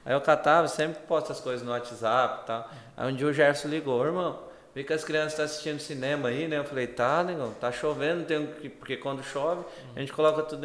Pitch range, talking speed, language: 120-155 Hz, 235 wpm, Portuguese